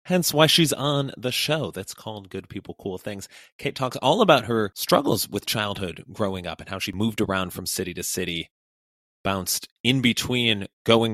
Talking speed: 190 wpm